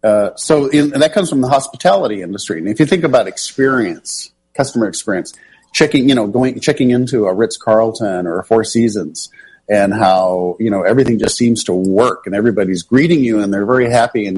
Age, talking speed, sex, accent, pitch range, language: 50-69, 195 wpm, male, American, 100-130 Hz, English